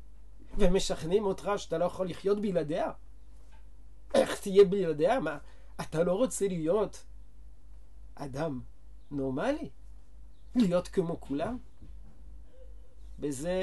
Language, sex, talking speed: Hebrew, male, 95 wpm